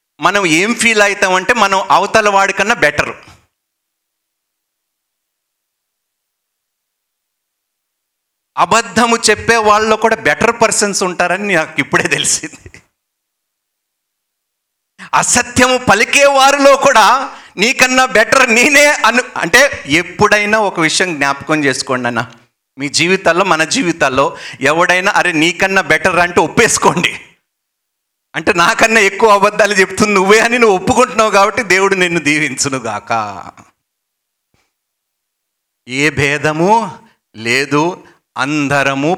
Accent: native